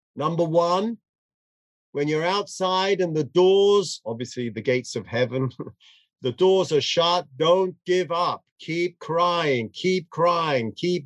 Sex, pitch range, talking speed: male, 140-185 Hz, 135 wpm